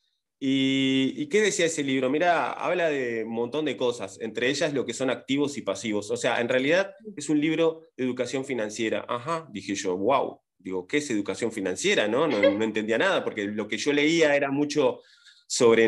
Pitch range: 110-155 Hz